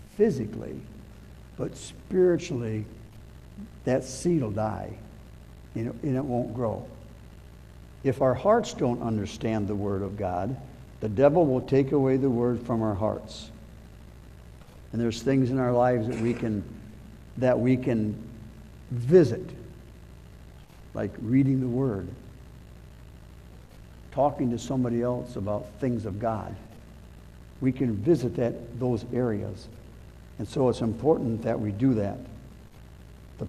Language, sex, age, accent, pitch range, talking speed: English, male, 60-79, American, 110-135 Hz, 125 wpm